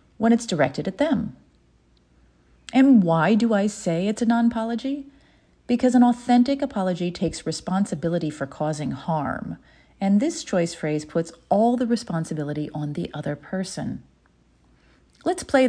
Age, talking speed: 40-59, 140 wpm